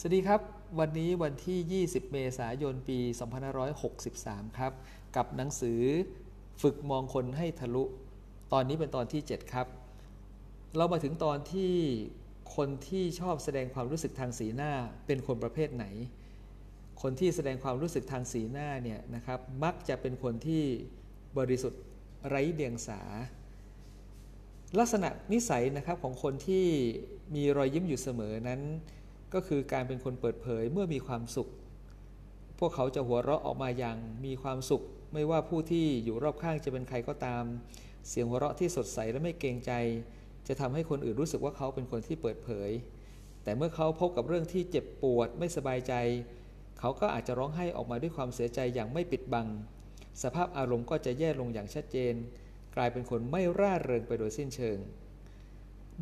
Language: Thai